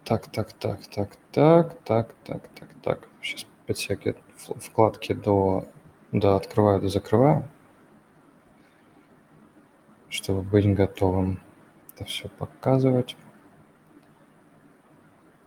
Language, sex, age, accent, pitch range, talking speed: Russian, male, 20-39, native, 100-125 Hz, 95 wpm